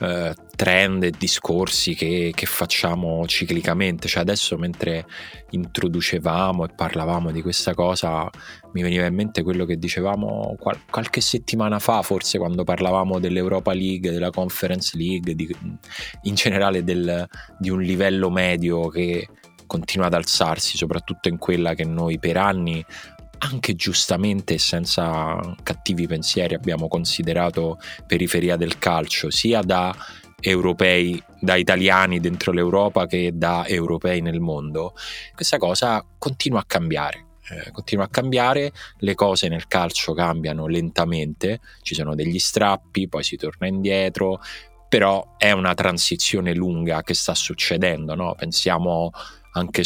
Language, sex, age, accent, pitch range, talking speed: Italian, male, 20-39, native, 85-95 Hz, 135 wpm